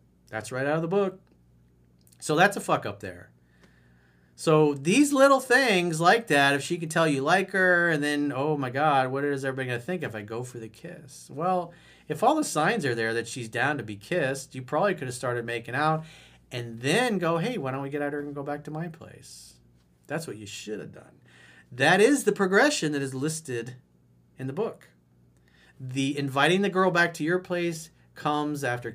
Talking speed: 215 wpm